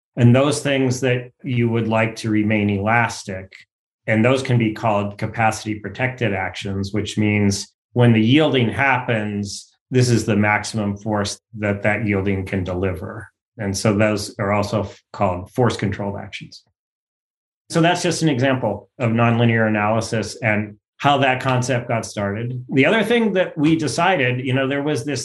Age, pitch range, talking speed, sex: 30-49, 105-135 Hz, 160 wpm, male